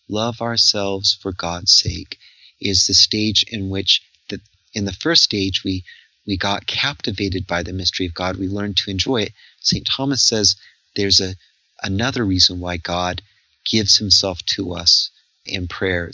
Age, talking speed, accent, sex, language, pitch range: 40-59, 155 wpm, American, male, English, 95-110 Hz